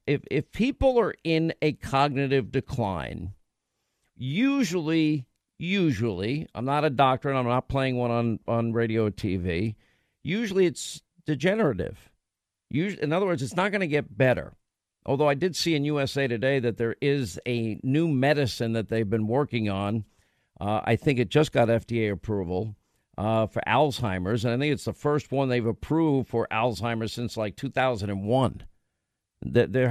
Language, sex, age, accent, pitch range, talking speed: English, male, 50-69, American, 115-145 Hz, 165 wpm